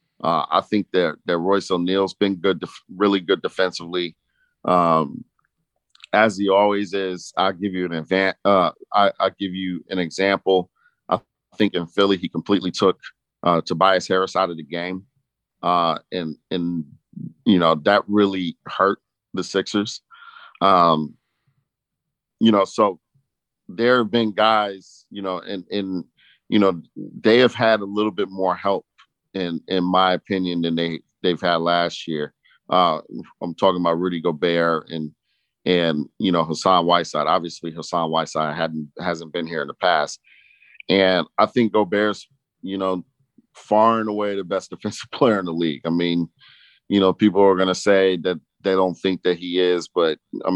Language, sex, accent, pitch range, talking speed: English, male, American, 85-105 Hz, 170 wpm